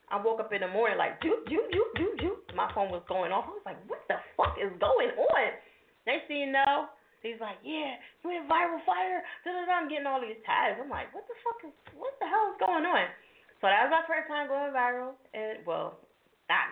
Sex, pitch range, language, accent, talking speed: female, 185-275 Hz, English, American, 245 wpm